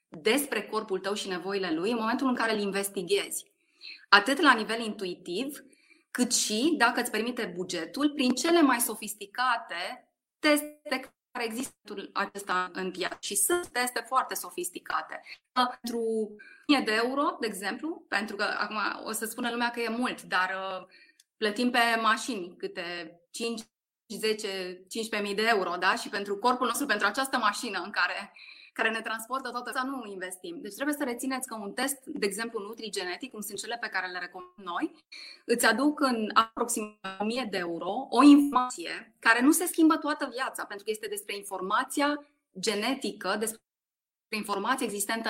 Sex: female